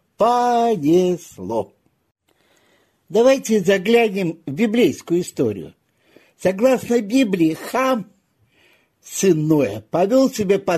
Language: Russian